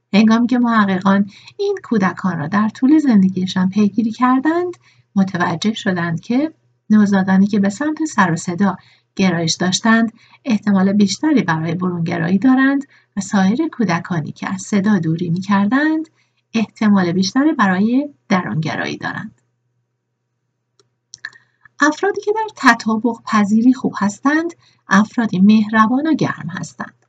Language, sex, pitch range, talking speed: Persian, female, 185-245 Hz, 115 wpm